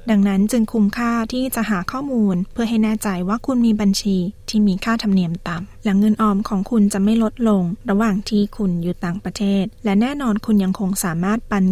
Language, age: Thai, 20-39